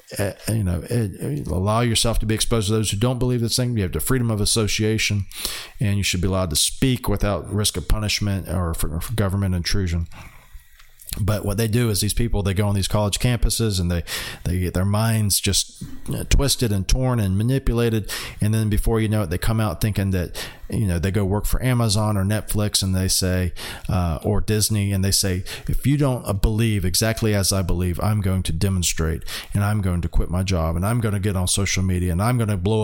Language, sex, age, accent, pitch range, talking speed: English, male, 40-59, American, 90-110 Hz, 230 wpm